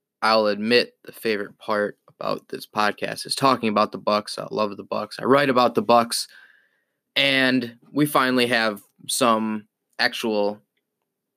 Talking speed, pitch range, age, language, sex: 150 wpm, 105-130 Hz, 20-39, English, male